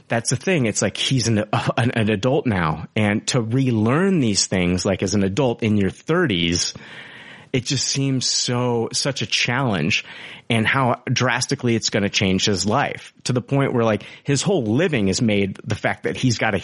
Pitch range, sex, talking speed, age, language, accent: 100-130 Hz, male, 200 wpm, 30-49, English, American